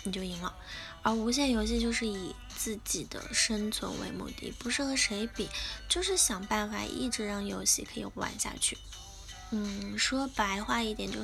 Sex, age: female, 10-29